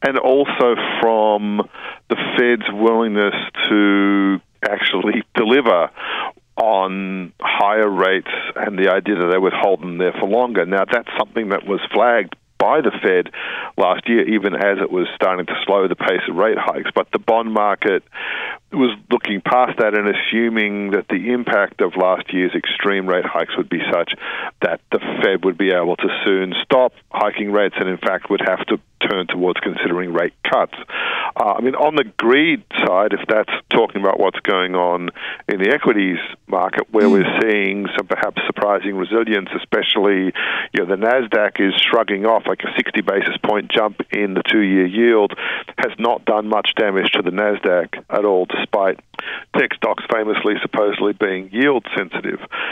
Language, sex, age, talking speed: English, male, 50-69, 170 wpm